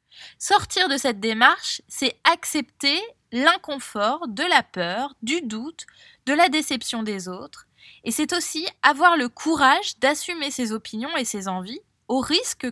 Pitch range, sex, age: 225-310 Hz, female, 20-39